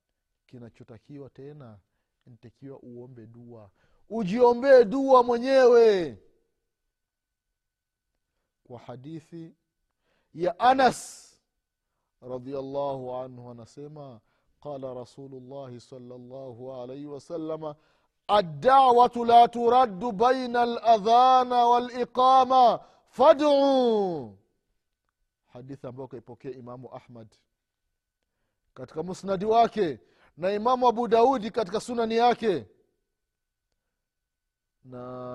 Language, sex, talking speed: Swahili, male, 75 wpm